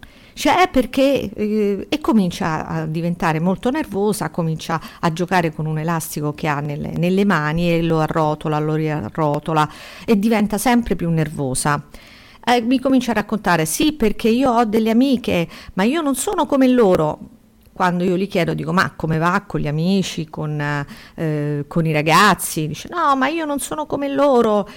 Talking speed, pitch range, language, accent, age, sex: 170 wpm, 165-250 Hz, Italian, native, 50-69, female